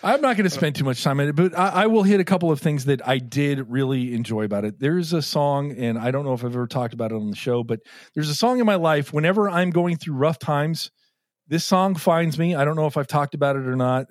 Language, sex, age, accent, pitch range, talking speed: English, male, 40-59, American, 115-150 Hz, 295 wpm